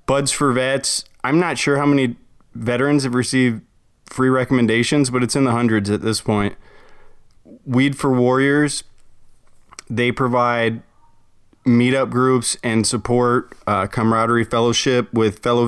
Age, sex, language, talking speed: 20-39, male, English, 135 wpm